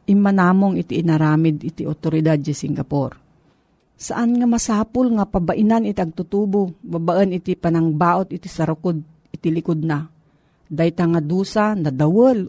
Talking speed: 115 wpm